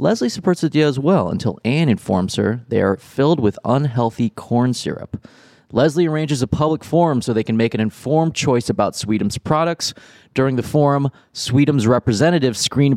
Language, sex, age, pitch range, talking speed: English, male, 20-39, 110-150 Hz, 175 wpm